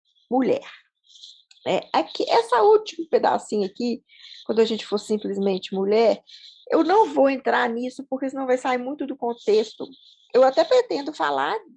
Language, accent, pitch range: Portuguese, Brazilian, 215-275 Hz